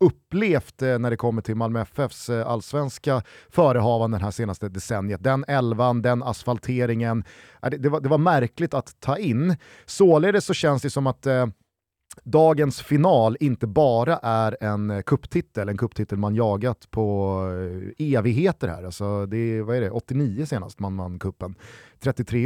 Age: 30-49